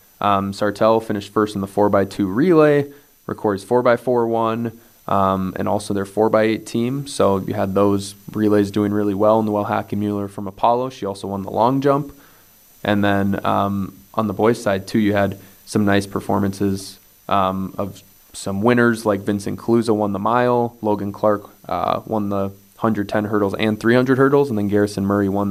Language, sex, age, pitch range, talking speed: English, male, 20-39, 100-110 Hz, 190 wpm